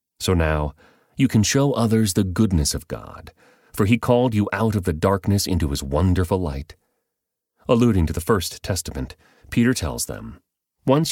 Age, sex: 30-49, male